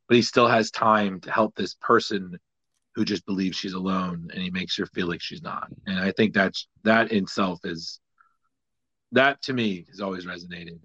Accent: American